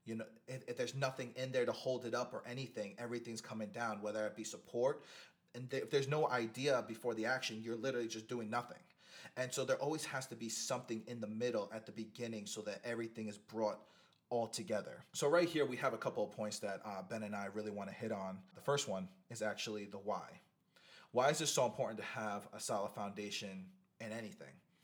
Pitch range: 105-120 Hz